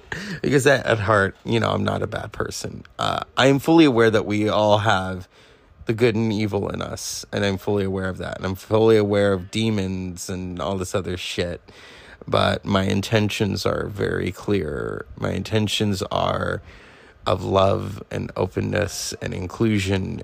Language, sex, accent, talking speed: English, male, American, 170 wpm